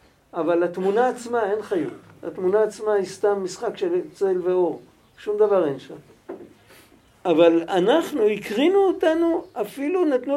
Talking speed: 135 wpm